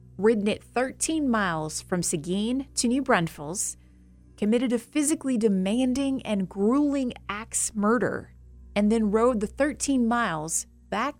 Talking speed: 130 wpm